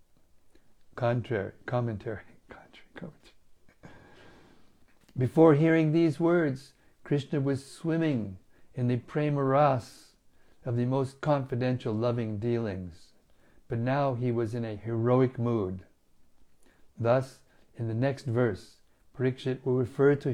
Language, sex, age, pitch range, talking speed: English, male, 60-79, 110-135 Hz, 105 wpm